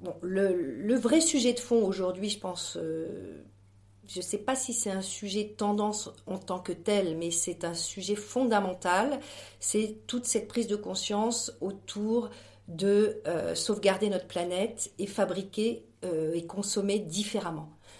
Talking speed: 160 wpm